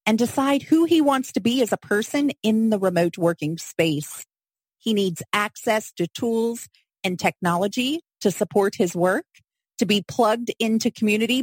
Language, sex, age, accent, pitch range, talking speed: English, female, 30-49, American, 195-260 Hz, 165 wpm